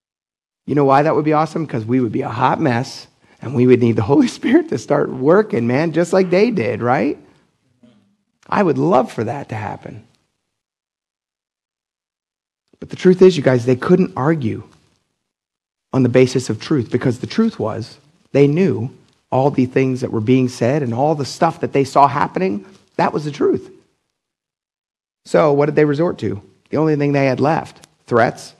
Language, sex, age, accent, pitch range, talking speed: English, male, 30-49, American, 120-155 Hz, 185 wpm